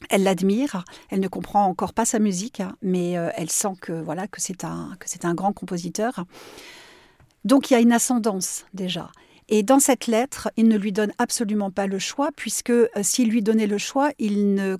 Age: 50-69